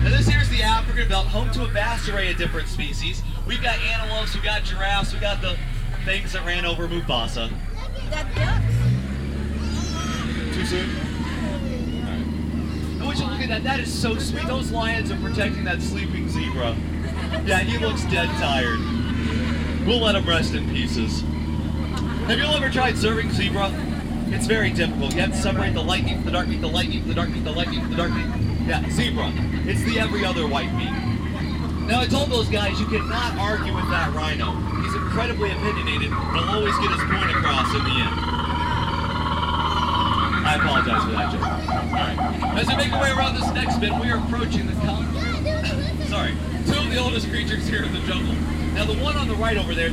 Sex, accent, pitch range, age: male, American, 75-85 Hz, 30-49